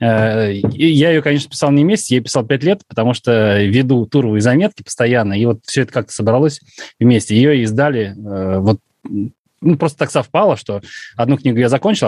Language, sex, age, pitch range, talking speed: Russian, male, 20-39, 110-140 Hz, 185 wpm